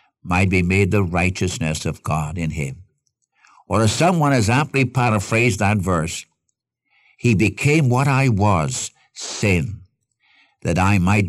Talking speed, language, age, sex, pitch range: 140 wpm, English, 60-79, male, 95-130 Hz